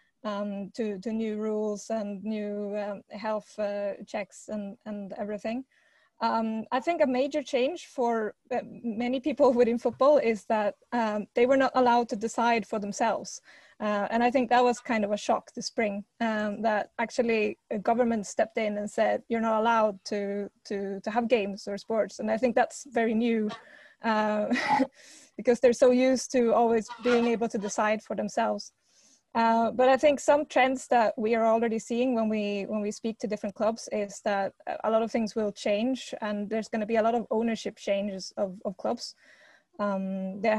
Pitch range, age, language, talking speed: 210-240 Hz, 20-39, English, 190 wpm